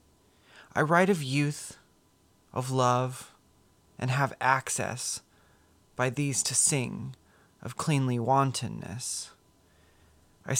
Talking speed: 95 wpm